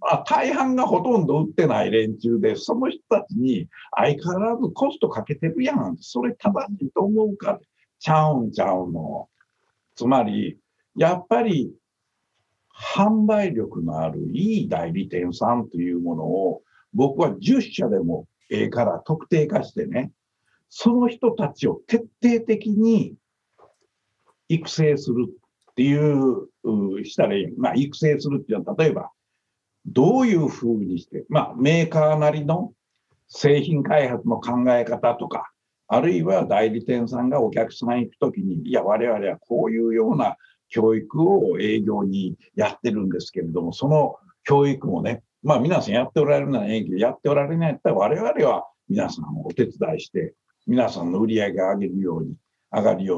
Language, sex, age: Japanese, male, 60-79